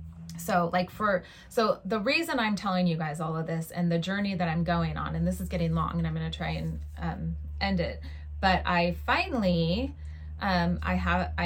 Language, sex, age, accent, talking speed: English, female, 20-39, American, 210 wpm